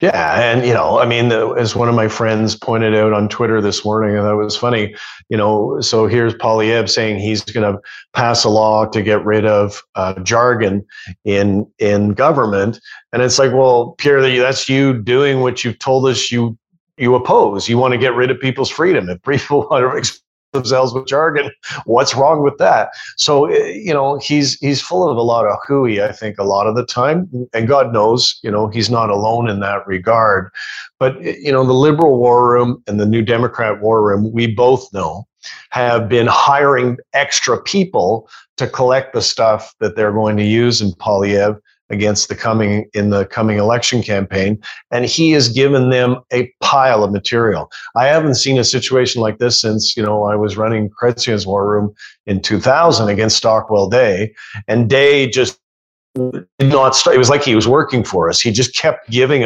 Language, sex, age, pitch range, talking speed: English, male, 40-59, 105-130 Hz, 195 wpm